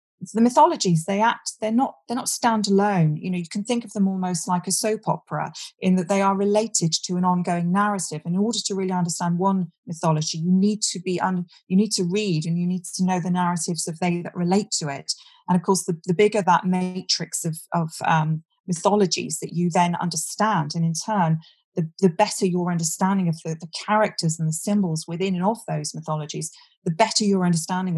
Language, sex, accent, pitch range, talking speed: English, female, British, 165-195 Hz, 215 wpm